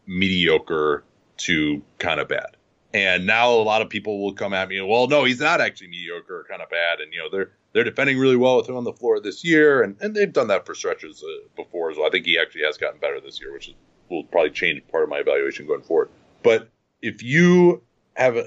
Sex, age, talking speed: male, 30-49, 240 wpm